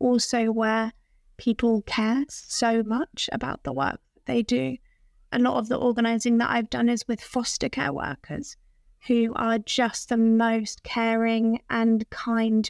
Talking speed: 150 wpm